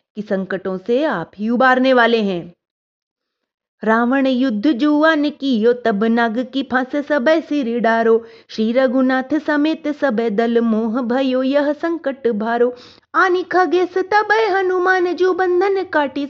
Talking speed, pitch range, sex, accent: 135 wpm, 230-330 Hz, female, native